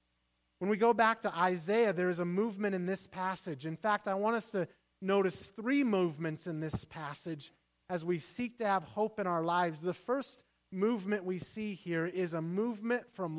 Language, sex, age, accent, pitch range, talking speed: English, male, 30-49, American, 145-190 Hz, 195 wpm